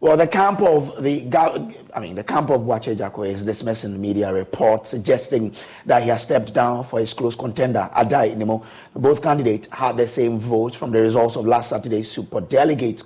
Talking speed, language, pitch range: 195 wpm, English, 110-145 Hz